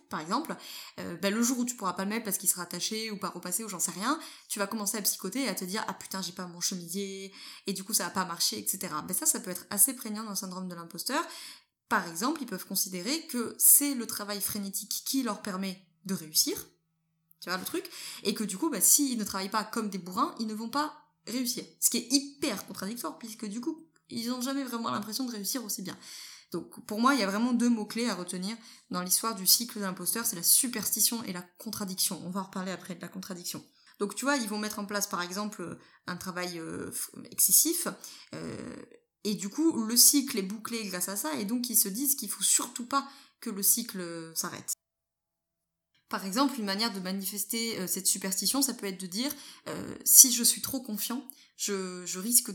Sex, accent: female, French